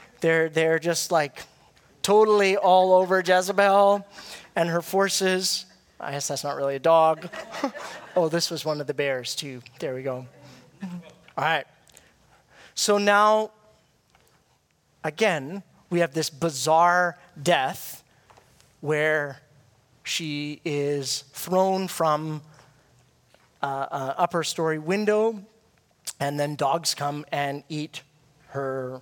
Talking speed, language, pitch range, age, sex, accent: 115 wpm, English, 145-195 Hz, 30-49, male, American